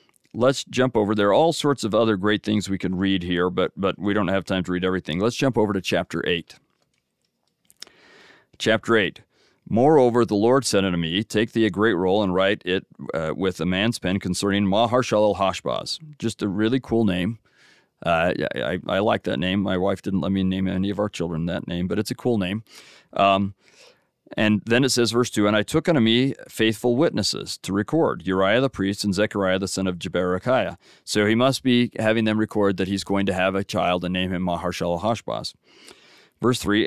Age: 40-59